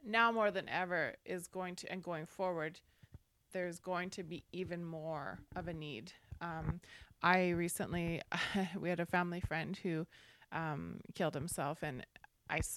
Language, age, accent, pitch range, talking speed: English, 20-39, American, 155-185 Hz, 160 wpm